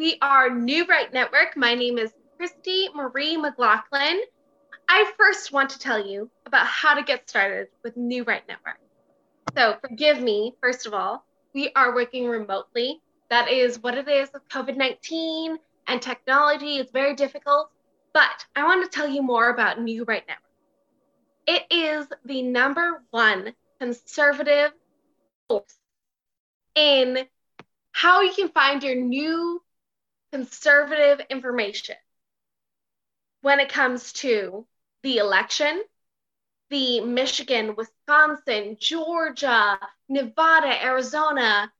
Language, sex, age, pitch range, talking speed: English, female, 10-29, 245-310 Hz, 125 wpm